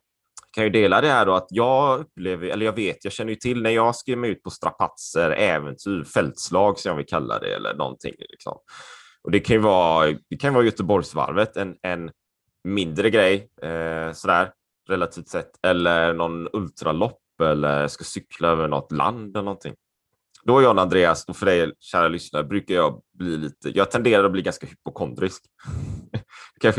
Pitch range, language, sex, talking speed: 85-115 Hz, Swedish, male, 180 wpm